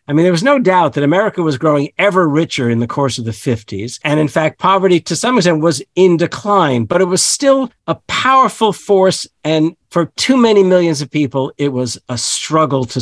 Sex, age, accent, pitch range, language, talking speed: male, 50-69, American, 135-185 Hz, English, 215 wpm